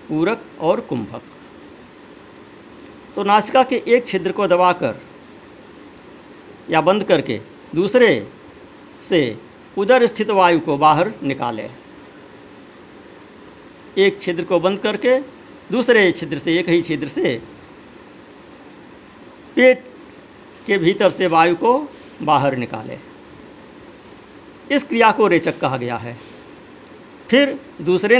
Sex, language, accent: male, Hindi, native